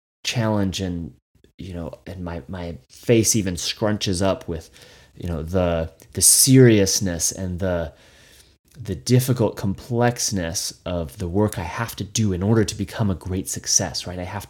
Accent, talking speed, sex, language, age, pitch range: American, 160 wpm, male, English, 30-49, 85-105 Hz